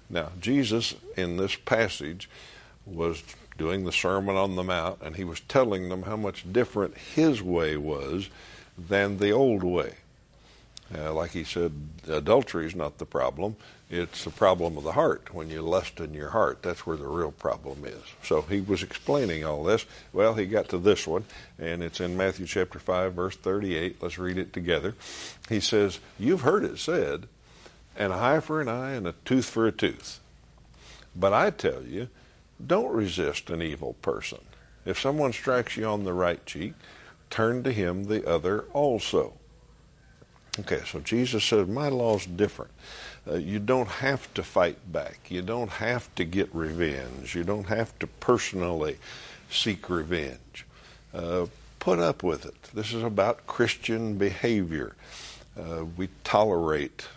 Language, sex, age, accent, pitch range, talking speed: English, male, 60-79, American, 85-115 Hz, 165 wpm